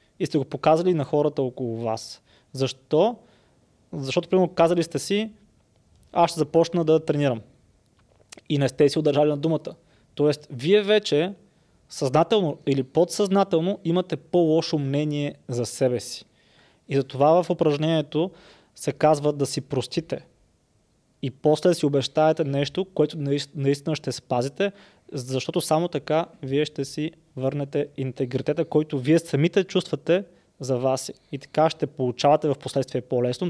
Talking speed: 140 wpm